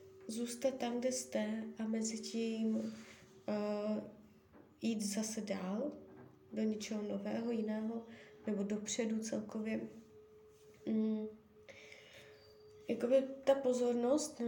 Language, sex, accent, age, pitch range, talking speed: Czech, female, native, 20-39, 210-235 Hz, 85 wpm